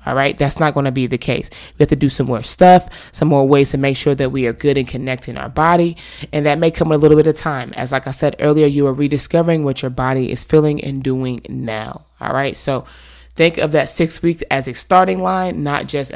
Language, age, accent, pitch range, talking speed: English, 20-39, American, 130-150 Hz, 260 wpm